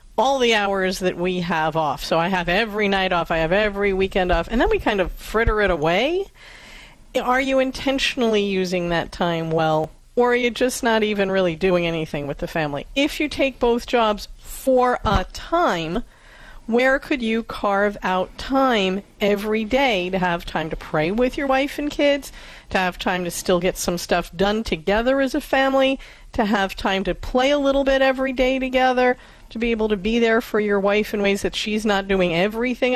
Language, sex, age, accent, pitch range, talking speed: English, female, 40-59, American, 185-245 Hz, 200 wpm